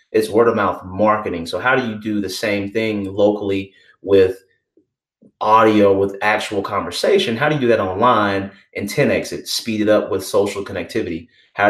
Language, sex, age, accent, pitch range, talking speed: English, male, 30-49, American, 100-145 Hz, 180 wpm